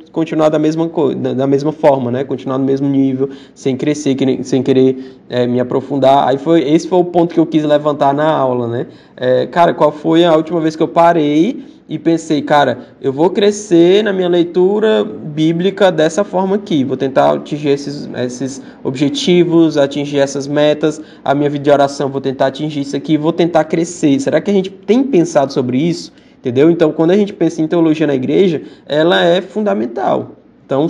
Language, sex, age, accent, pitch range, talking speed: Portuguese, male, 20-39, Brazilian, 140-180 Hz, 190 wpm